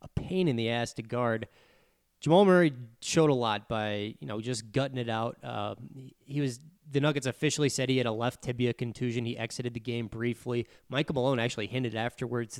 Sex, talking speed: male, 205 wpm